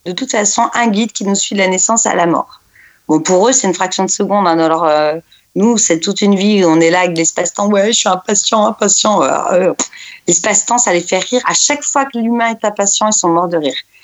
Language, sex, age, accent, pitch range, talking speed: French, female, 30-49, French, 200-245 Hz, 255 wpm